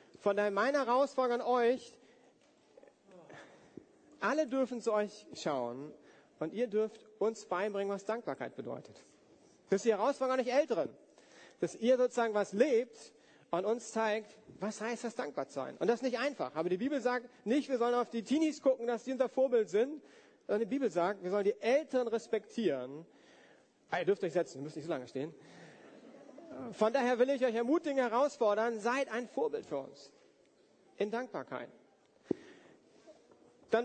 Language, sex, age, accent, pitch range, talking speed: German, male, 40-59, German, 190-250 Hz, 170 wpm